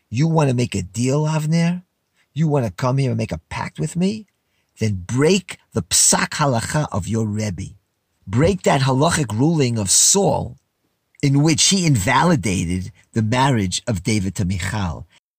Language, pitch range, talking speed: English, 100-150 Hz, 165 wpm